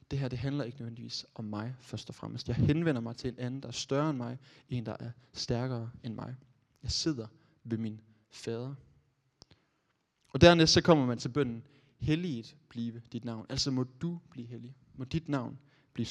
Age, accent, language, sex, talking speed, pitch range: 20-39, native, Danish, male, 195 wpm, 120-150 Hz